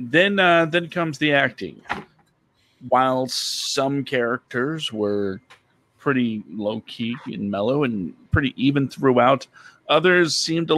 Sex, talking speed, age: male, 120 wpm, 40-59